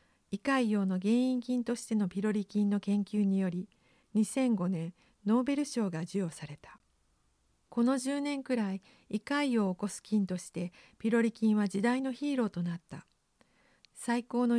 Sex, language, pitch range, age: female, Japanese, 190-245 Hz, 50-69